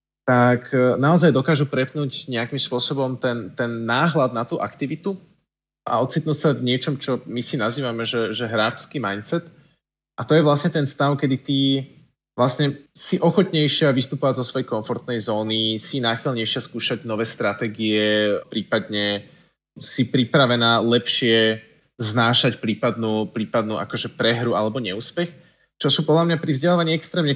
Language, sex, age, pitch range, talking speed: Slovak, male, 20-39, 115-150 Hz, 140 wpm